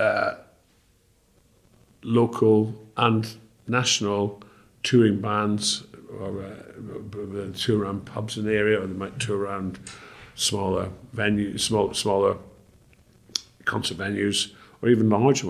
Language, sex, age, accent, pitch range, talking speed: English, male, 50-69, British, 95-110 Hz, 110 wpm